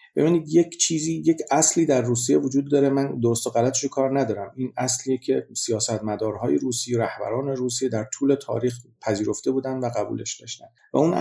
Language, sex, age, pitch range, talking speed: Persian, male, 40-59, 115-140 Hz, 170 wpm